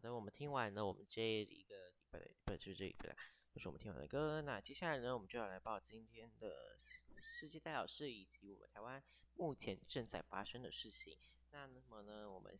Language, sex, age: Chinese, male, 20-39